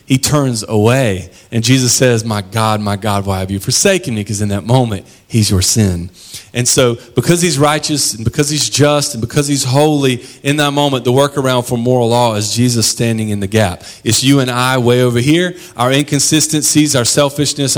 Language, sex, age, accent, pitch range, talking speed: English, male, 40-59, American, 105-130 Hz, 205 wpm